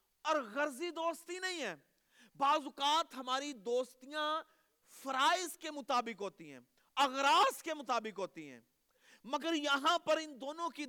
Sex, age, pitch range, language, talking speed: male, 40-59, 230-310 Hz, Urdu, 130 wpm